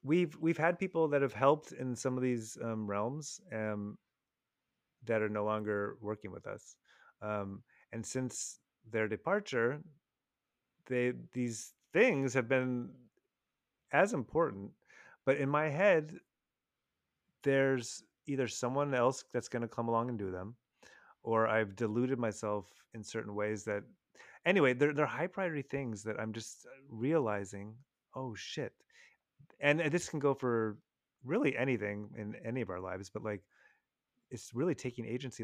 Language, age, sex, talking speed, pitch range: English, 30-49, male, 145 wpm, 105-135 Hz